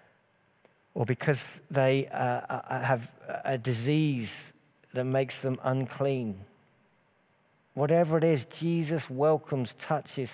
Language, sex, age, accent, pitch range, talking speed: English, male, 50-69, British, 125-150 Hz, 100 wpm